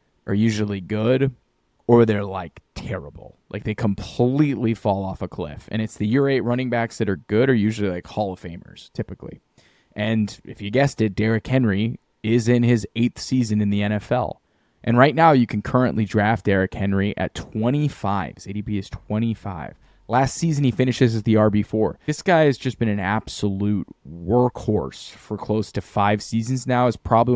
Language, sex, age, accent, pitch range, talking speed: English, male, 20-39, American, 105-130 Hz, 185 wpm